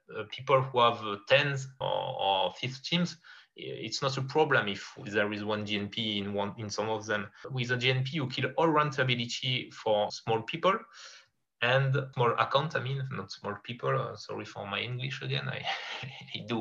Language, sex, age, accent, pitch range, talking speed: English, male, 20-39, French, 105-135 Hz, 185 wpm